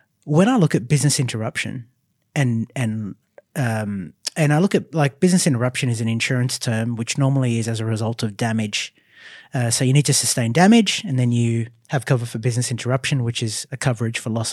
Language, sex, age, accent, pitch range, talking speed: English, male, 30-49, Australian, 120-145 Hz, 200 wpm